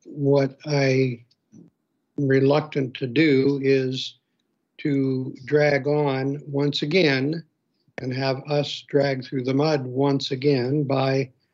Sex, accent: male, American